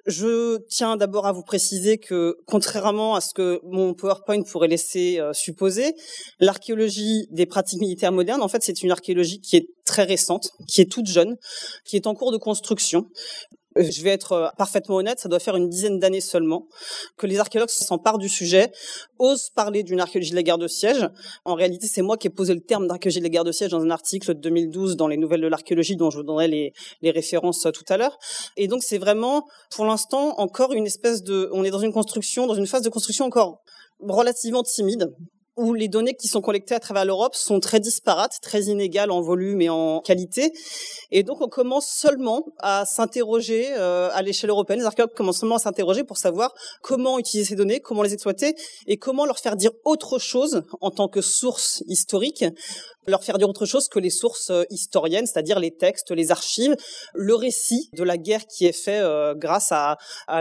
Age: 30-49